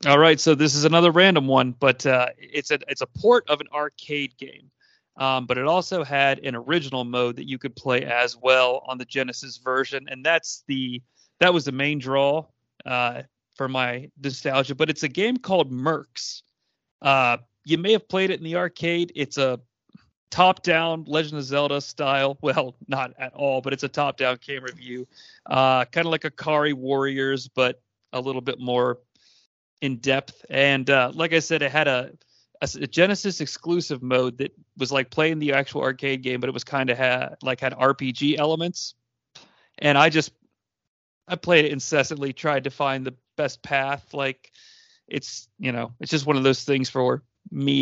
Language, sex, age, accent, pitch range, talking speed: English, male, 40-59, American, 130-155 Hz, 190 wpm